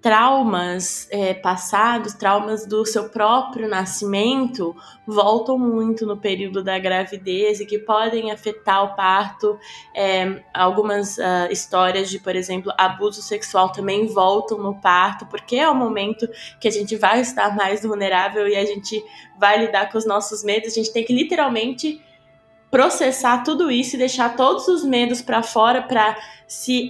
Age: 20-39